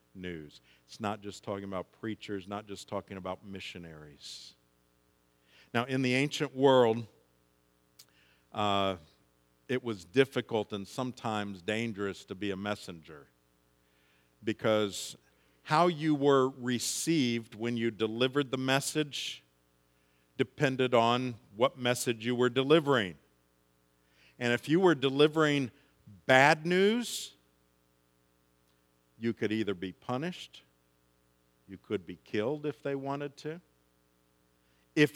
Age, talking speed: 50-69, 115 wpm